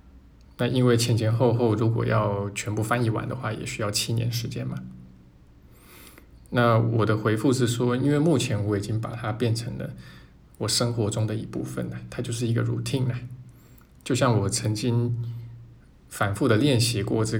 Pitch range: 100-120 Hz